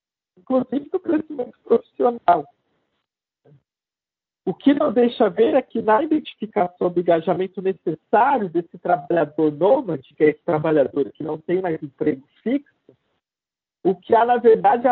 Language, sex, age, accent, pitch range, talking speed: Portuguese, male, 50-69, Brazilian, 190-265 Hz, 140 wpm